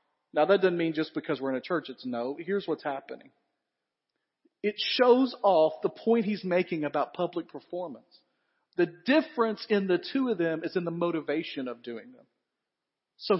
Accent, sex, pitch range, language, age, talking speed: American, male, 175-250 Hz, English, 40-59, 180 wpm